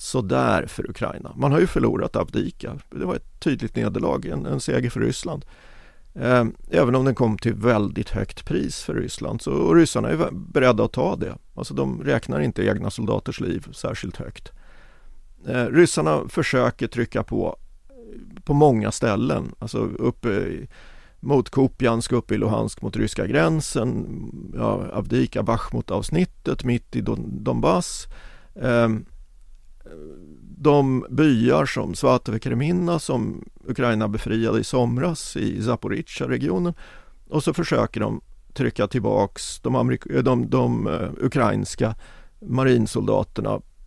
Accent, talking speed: native, 135 wpm